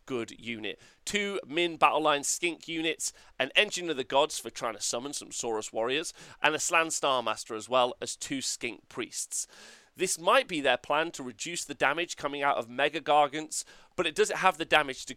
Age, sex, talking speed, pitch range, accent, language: 30-49, male, 205 wpm, 130-185 Hz, British, English